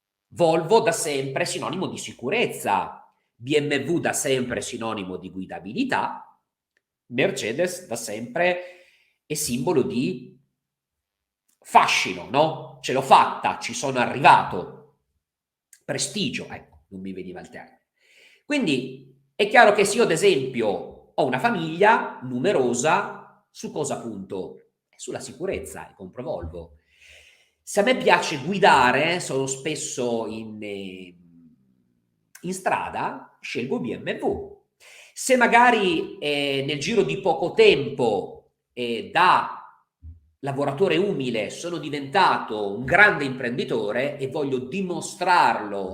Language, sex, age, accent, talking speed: Italian, male, 40-59, native, 110 wpm